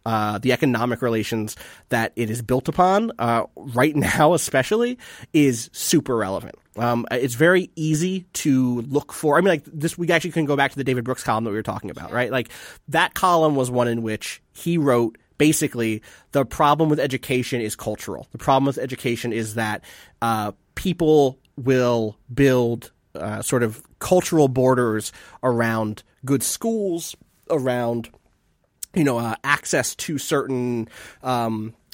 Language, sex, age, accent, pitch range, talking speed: English, male, 30-49, American, 115-150 Hz, 160 wpm